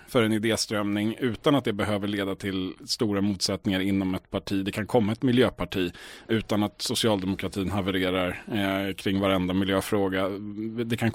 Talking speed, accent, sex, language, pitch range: 150 wpm, Norwegian, male, Swedish, 100-125 Hz